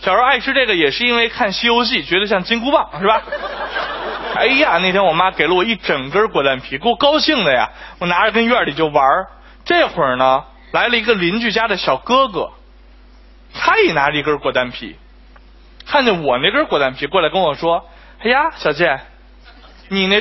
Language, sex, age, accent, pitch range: Chinese, male, 20-39, native, 190-290 Hz